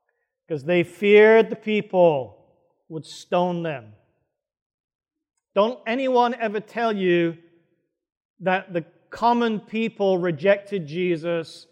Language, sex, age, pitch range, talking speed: English, male, 40-59, 165-200 Hz, 95 wpm